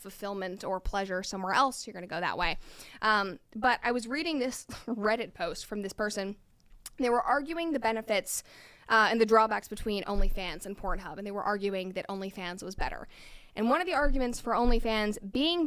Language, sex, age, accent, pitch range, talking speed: English, female, 20-39, American, 205-270 Hz, 195 wpm